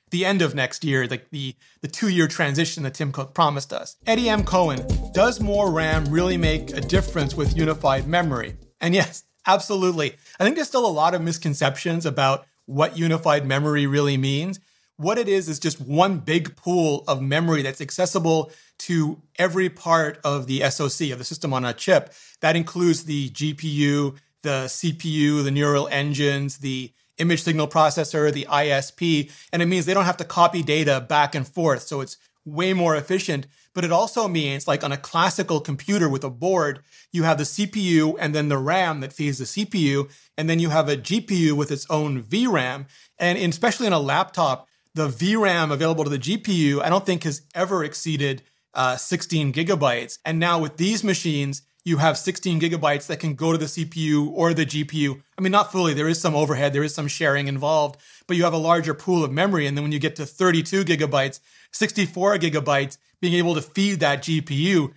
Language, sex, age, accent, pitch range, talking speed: English, male, 30-49, American, 145-175 Hz, 195 wpm